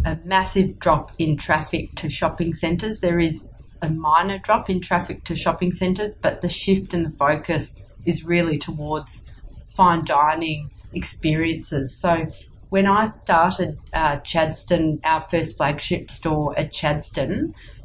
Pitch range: 155-180 Hz